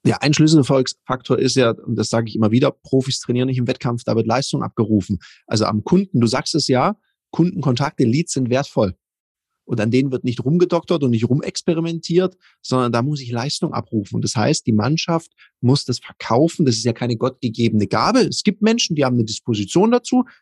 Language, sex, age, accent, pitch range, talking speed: German, male, 30-49, German, 120-180 Hz, 200 wpm